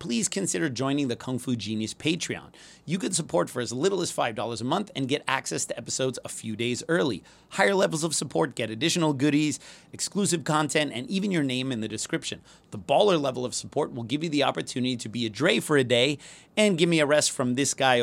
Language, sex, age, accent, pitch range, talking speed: English, male, 30-49, American, 120-165 Hz, 225 wpm